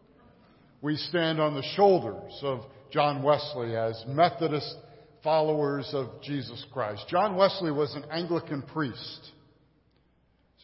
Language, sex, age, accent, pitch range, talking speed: English, male, 50-69, American, 135-175 Hz, 120 wpm